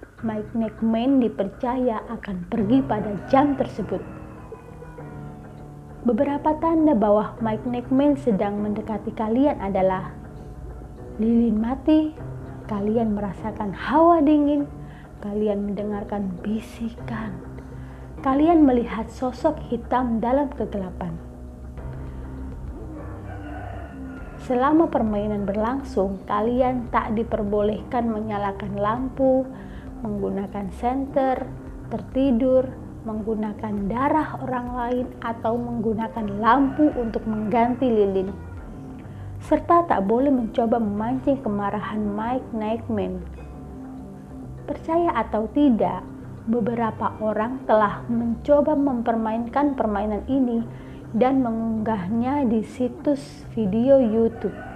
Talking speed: 85 wpm